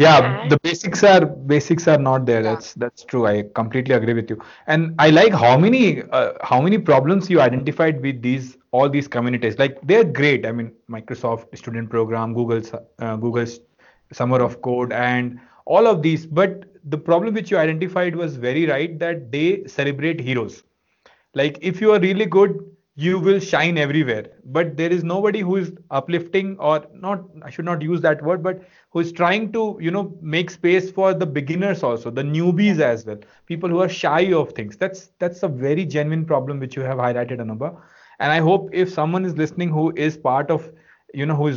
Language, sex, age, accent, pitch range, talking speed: English, male, 30-49, Indian, 130-175 Hz, 200 wpm